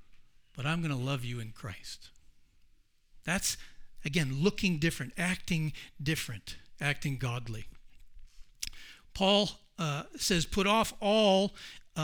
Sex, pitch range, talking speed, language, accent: male, 135-180 Hz, 105 wpm, English, American